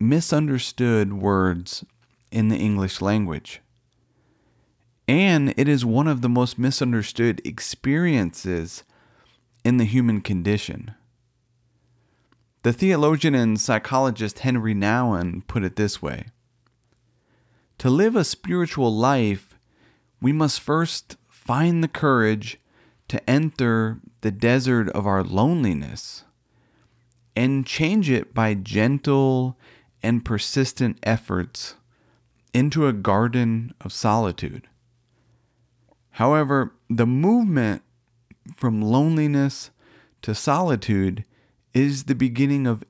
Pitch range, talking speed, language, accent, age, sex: 110-135 Hz, 100 wpm, English, American, 30-49, male